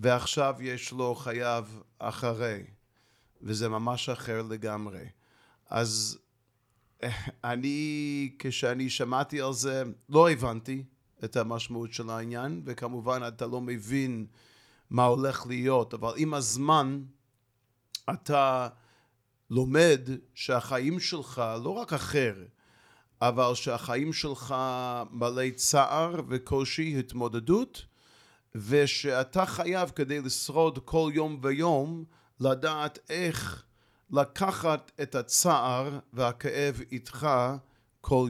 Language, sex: Hebrew, male